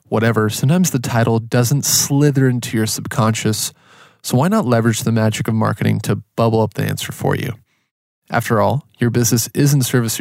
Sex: male